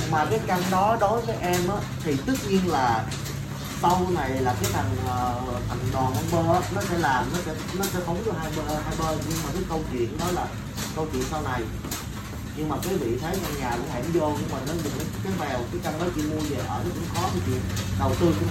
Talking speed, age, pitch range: 240 wpm, 20-39, 115-165 Hz